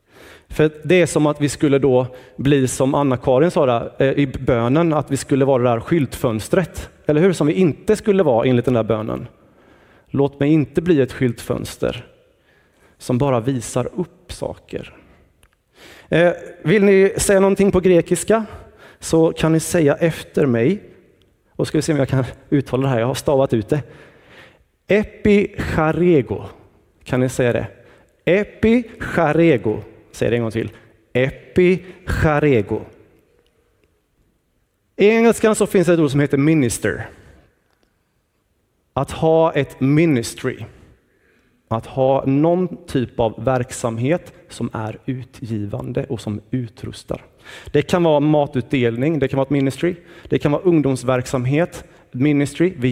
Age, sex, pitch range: 30-49, male, 125-165 Hz